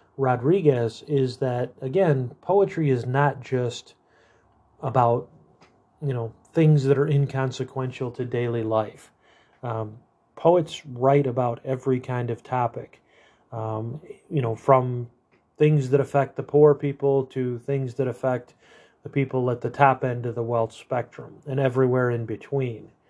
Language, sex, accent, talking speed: English, male, American, 140 wpm